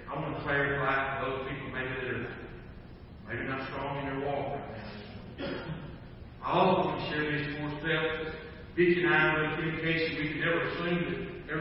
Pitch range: 130-175 Hz